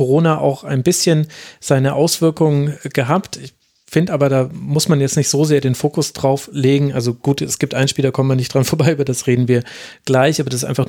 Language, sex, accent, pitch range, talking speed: German, male, German, 135-160 Hz, 230 wpm